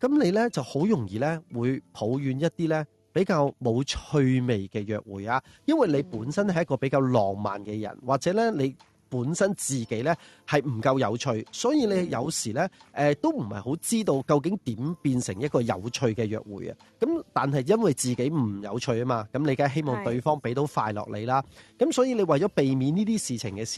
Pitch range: 115-165 Hz